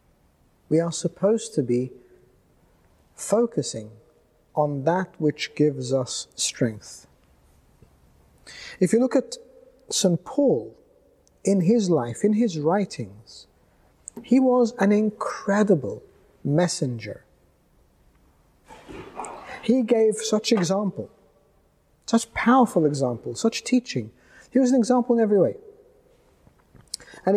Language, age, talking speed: English, 50-69, 100 wpm